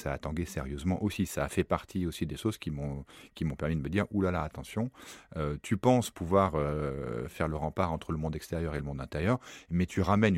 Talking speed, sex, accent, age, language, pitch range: 255 wpm, male, French, 30-49, French, 75-105 Hz